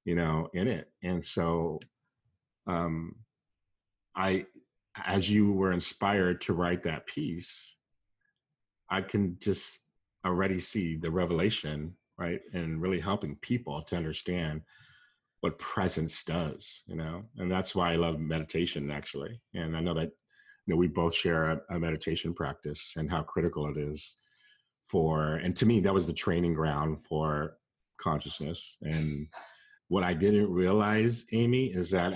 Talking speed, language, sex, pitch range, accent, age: 145 wpm, English, male, 80-95 Hz, American, 40-59